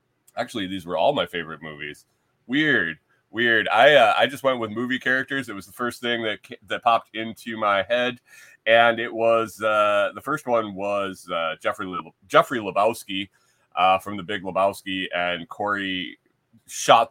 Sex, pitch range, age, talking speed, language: male, 95-115 Hz, 30-49, 170 wpm, English